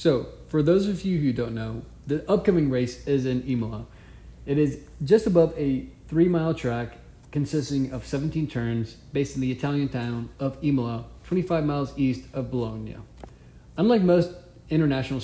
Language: English